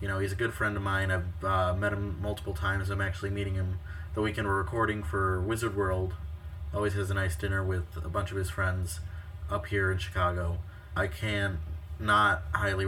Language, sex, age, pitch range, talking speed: English, male, 20-39, 85-100 Hz, 205 wpm